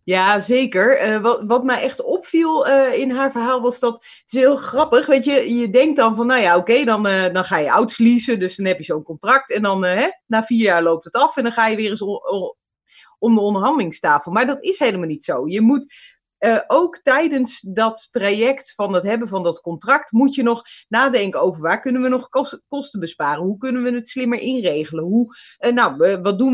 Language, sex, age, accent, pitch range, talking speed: Dutch, female, 30-49, Dutch, 205-270 Hz, 220 wpm